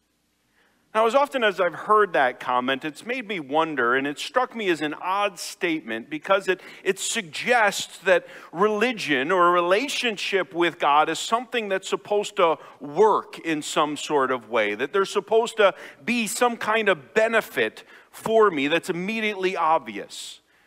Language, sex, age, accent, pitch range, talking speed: English, male, 50-69, American, 165-220 Hz, 165 wpm